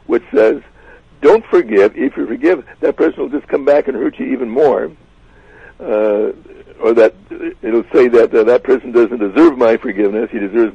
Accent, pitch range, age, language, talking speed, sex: American, 335-450 Hz, 60-79, English, 190 wpm, male